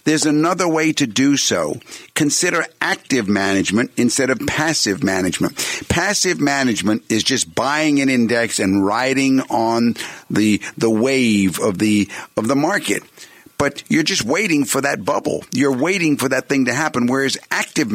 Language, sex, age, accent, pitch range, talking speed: English, male, 50-69, American, 110-145 Hz, 155 wpm